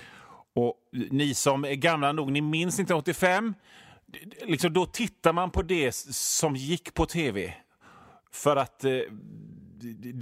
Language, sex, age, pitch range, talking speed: Swedish, male, 30-49, 115-175 Hz, 130 wpm